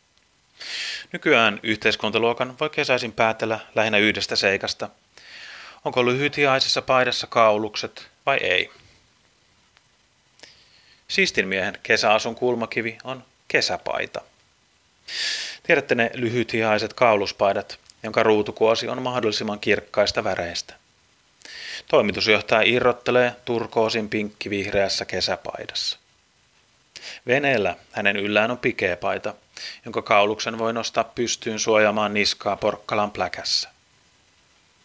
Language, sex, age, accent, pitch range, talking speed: Finnish, male, 30-49, native, 105-125 Hz, 85 wpm